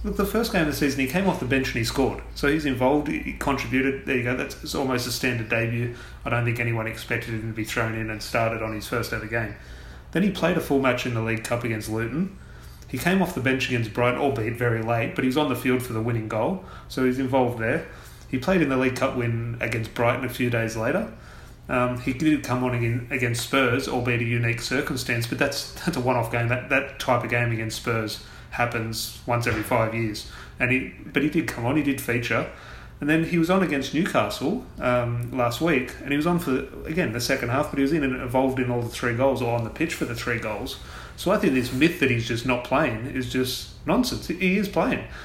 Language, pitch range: English, 115-140 Hz